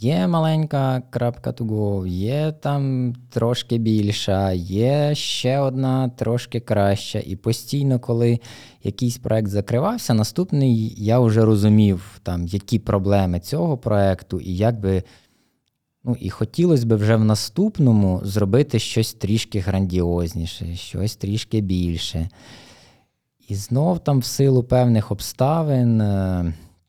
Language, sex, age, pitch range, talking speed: Ukrainian, male, 20-39, 95-125 Hz, 120 wpm